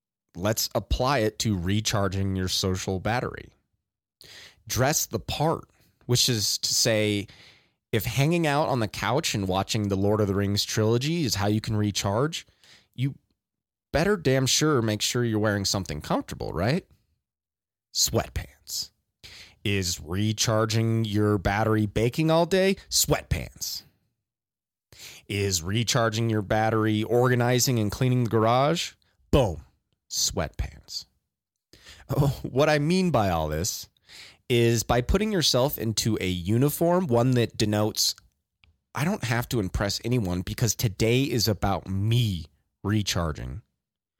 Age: 30-49